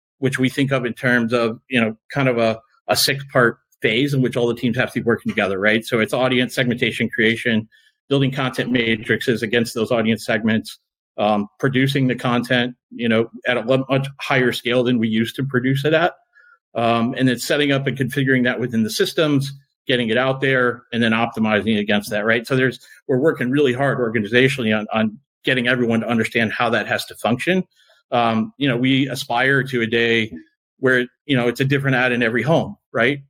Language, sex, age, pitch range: English, male, 40-59, 115-130 Hz